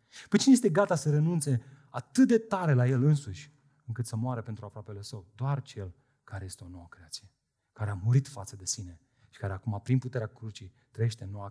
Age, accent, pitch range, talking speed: 30-49, native, 120-165 Hz, 205 wpm